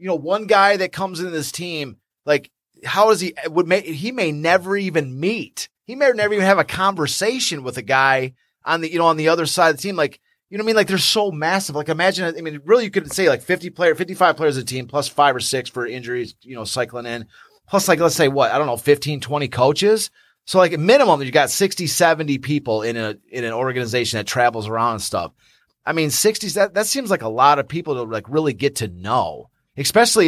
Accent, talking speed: American, 245 wpm